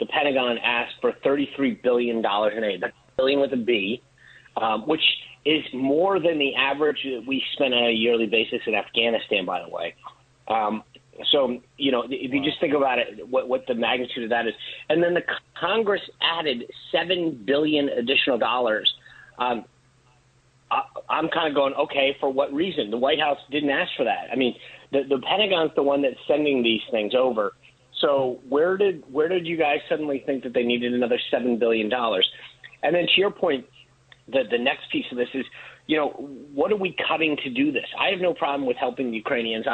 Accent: American